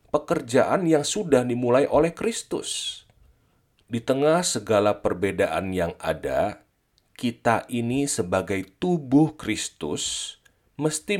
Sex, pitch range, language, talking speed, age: male, 110-160 Hz, Indonesian, 95 wpm, 40-59